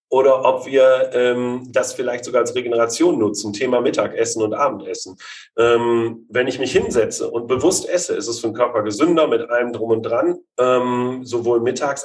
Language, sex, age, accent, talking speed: German, male, 40-59, German, 180 wpm